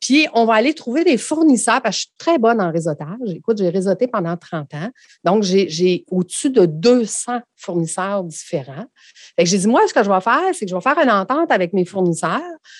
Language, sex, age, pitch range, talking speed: French, female, 50-69, 190-260 Hz, 225 wpm